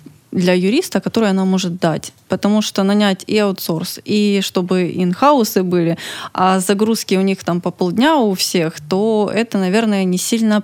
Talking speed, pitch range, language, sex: 165 wpm, 180-220 Hz, Ukrainian, female